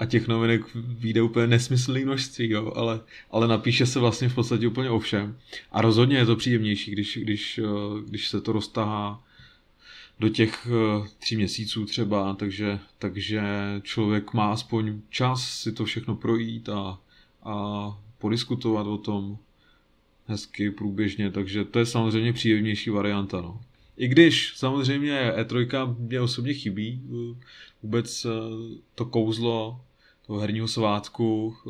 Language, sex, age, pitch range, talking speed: Czech, male, 20-39, 105-115 Hz, 130 wpm